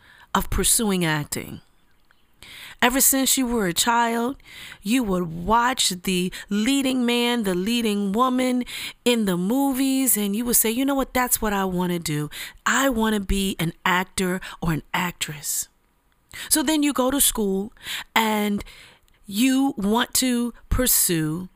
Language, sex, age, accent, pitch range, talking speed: English, female, 30-49, American, 195-280 Hz, 150 wpm